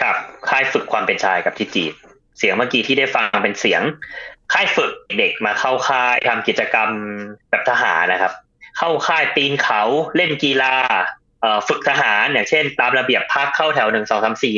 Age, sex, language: 20-39, male, Thai